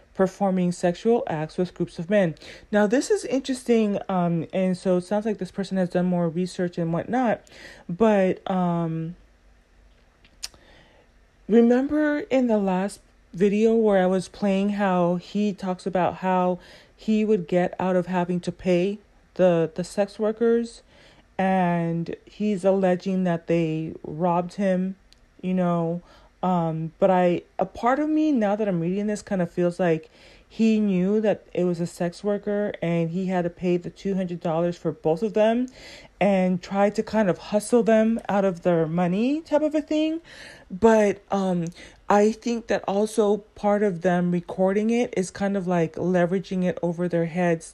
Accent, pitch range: American, 175-210 Hz